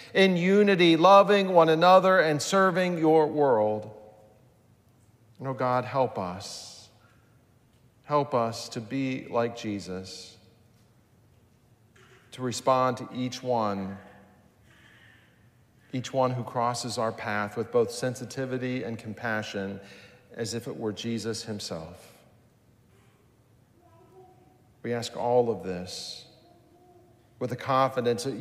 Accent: American